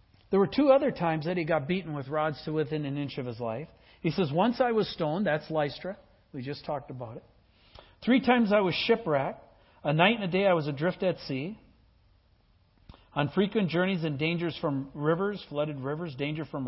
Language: English